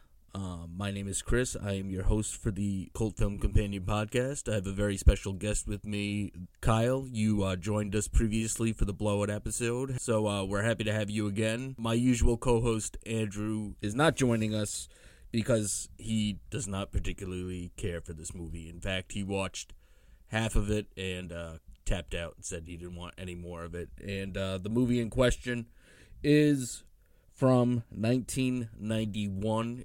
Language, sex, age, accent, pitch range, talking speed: English, male, 30-49, American, 95-110 Hz, 175 wpm